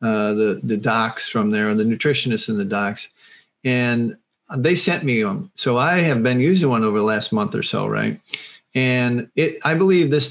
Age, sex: 40-59, male